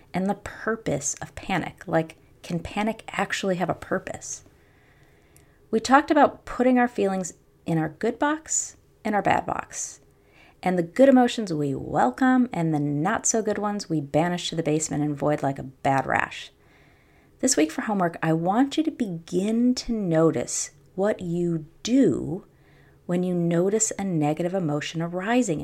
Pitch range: 160-215 Hz